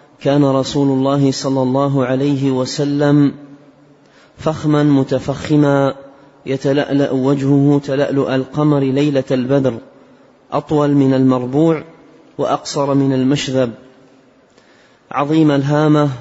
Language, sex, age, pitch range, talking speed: Arabic, male, 30-49, 135-150 Hz, 85 wpm